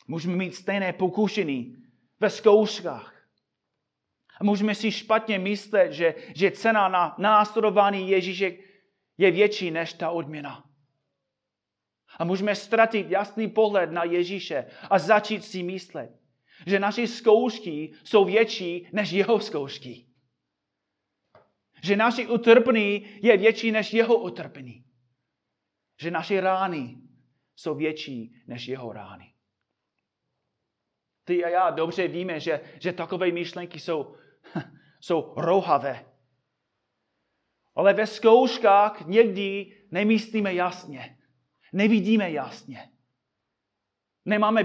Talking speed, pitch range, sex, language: 105 wpm, 160-210 Hz, male, Czech